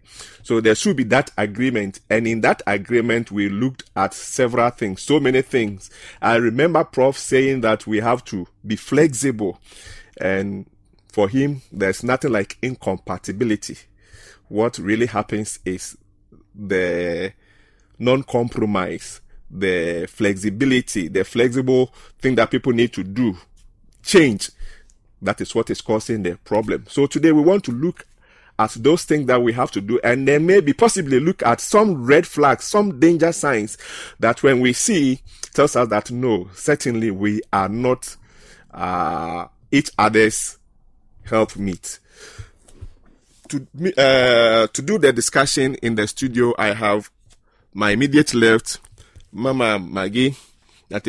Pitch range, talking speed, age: 105-130 Hz, 140 wpm, 40-59